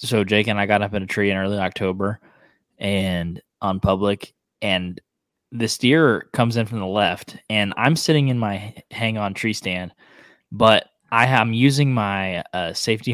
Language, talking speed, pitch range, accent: English, 175 wpm, 105-135 Hz, American